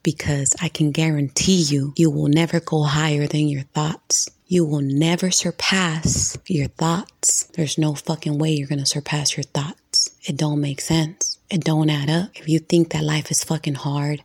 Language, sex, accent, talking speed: English, female, American, 190 wpm